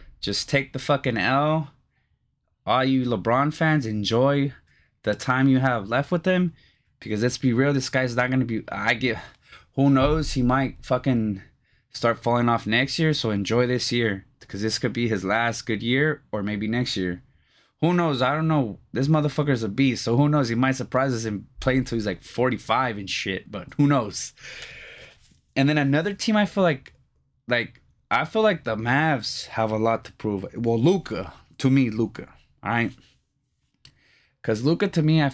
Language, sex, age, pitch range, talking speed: English, male, 20-39, 115-145 Hz, 190 wpm